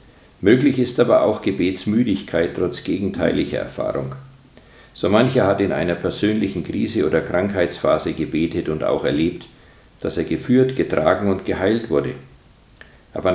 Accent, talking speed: German, 130 wpm